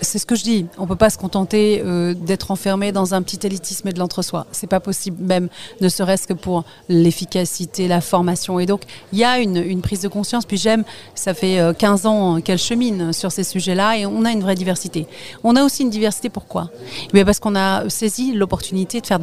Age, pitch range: 40-59, 175-210 Hz